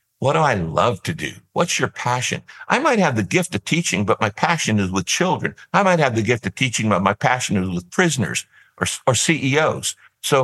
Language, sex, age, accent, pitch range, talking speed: English, male, 60-79, American, 105-140 Hz, 225 wpm